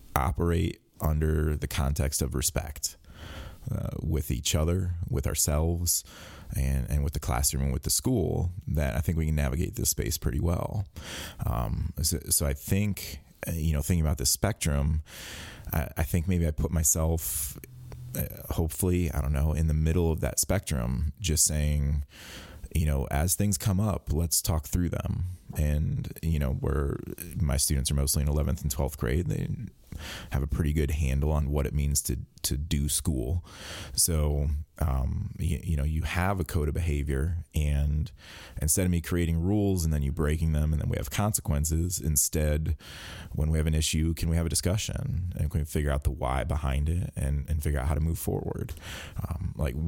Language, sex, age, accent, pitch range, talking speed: English, male, 30-49, American, 75-85 Hz, 190 wpm